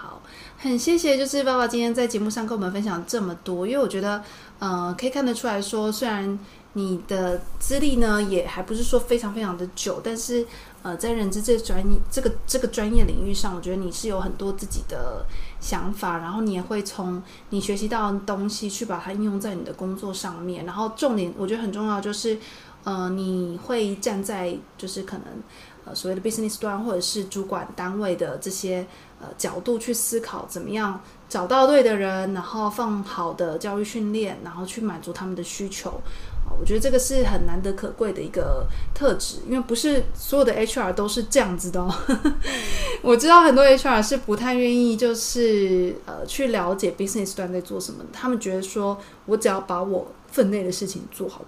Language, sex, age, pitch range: Chinese, female, 20-39, 190-235 Hz